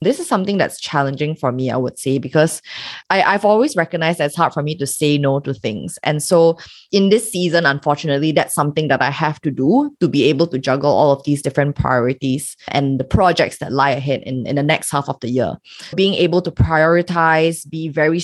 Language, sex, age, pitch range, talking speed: English, female, 20-39, 145-180 Hz, 220 wpm